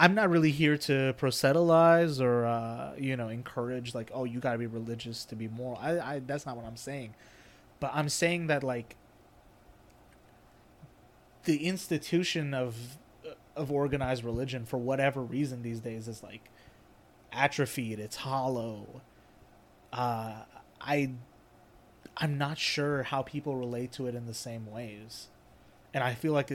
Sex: male